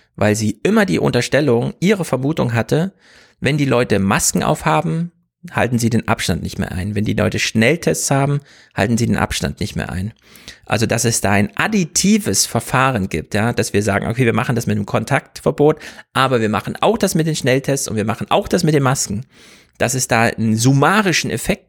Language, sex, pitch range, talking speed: German, male, 105-140 Hz, 200 wpm